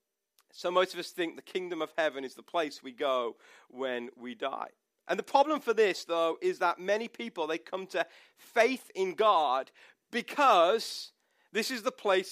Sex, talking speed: male, 185 wpm